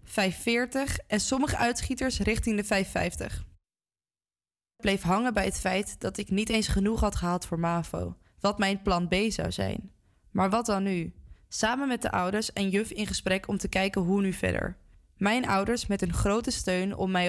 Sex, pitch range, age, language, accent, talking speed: female, 190-225 Hz, 20-39, Dutch, Dutch, 185 wpm